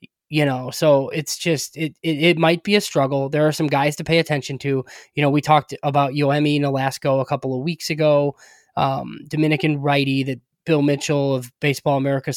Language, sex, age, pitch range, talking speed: English, male, 20-39, 135-155 Hz, 205 wpm